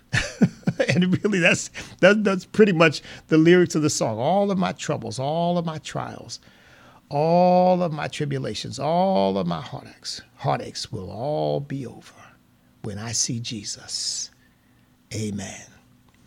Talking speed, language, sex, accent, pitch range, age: 135 wpm, English, male, American, 115-140 Hz, 50-69